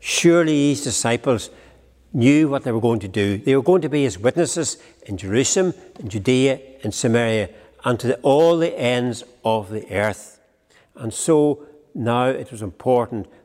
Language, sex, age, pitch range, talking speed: English, male, 60-79, 105-130 Hz, 165 wpm